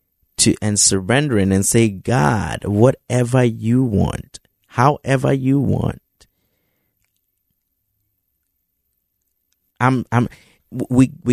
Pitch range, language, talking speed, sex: 95-135 Hz, English, 75 wpm, male